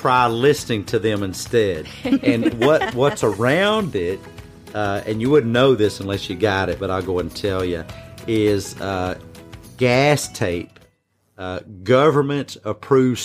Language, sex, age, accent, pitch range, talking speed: Swedish, male, 40-59, American, 105-125 Hz, 150 wpm